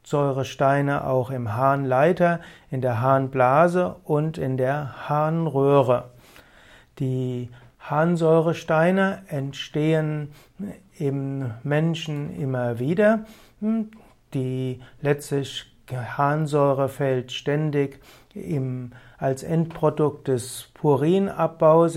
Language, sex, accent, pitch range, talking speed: German, male, German, 135-165 Hz, 75 wpm